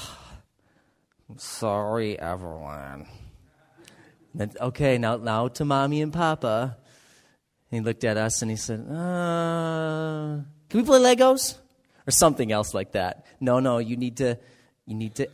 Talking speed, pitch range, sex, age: 135 wpm, 110-160 Hz, male, 30-49